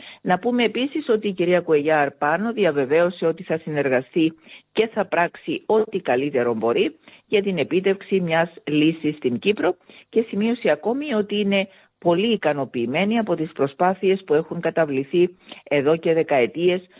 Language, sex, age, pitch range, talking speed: Greek, female, 50-69, 140-195 Hz, 145 wpm